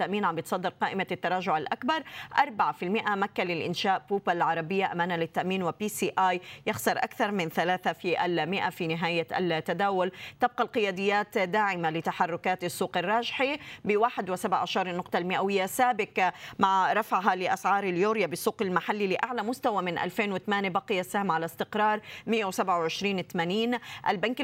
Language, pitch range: Arabic, 185-225 Hz